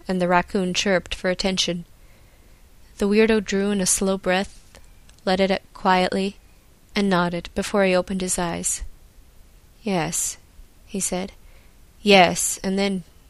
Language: English